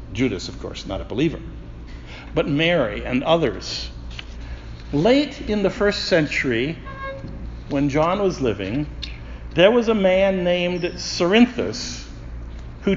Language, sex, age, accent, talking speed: English, male, 60-79, American, 120 wpm